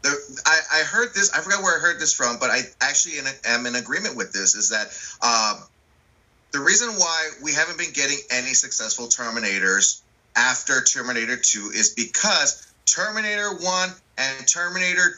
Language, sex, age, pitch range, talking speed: English, male, 30-49, 120-160 Hz, 160 wpm